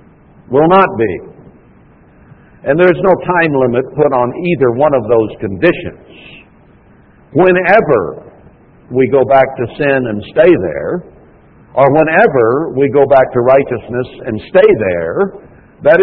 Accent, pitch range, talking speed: American, 120-155 Hz, 130 wpm